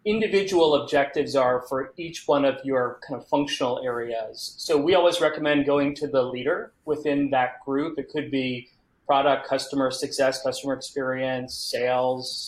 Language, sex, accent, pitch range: English, male, American, 135-165 Hz